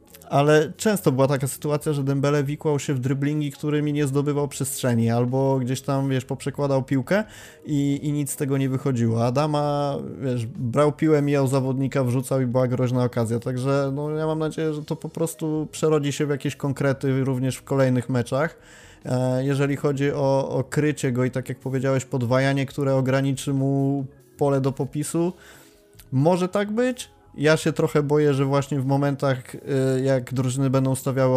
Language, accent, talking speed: Polish, native, 165 wpm